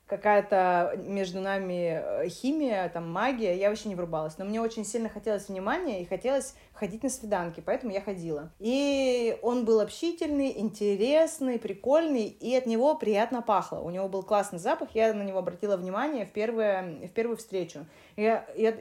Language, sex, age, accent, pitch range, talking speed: Russian, female, 20-39, native, 185-230 Hz, 165 wpm